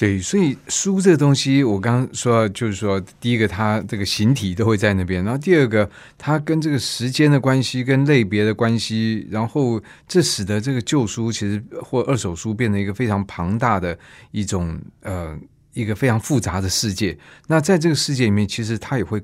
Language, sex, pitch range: Chinese, male, 95-125 Hz